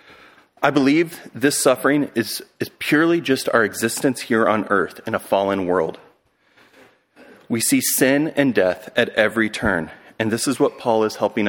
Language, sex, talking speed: English, male, 165 wpm